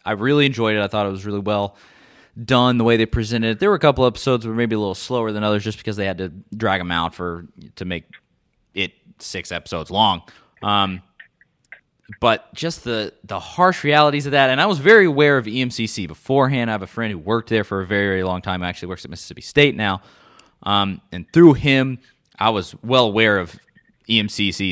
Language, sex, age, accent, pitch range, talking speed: English, male, 20-39, American, 95-125 Hz, 220 wpm